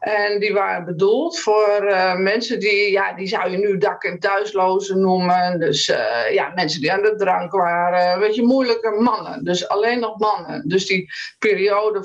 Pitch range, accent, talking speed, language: 185-235 Hz, Dutch, 180 wpm, Dutch